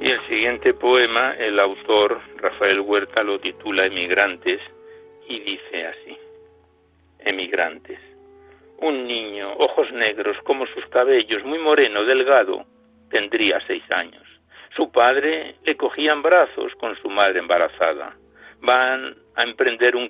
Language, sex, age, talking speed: Spanish, male, 60-79, 120 wpm